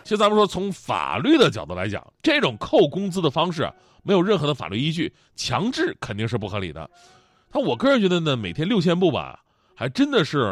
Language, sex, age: Chinese, male, 30-49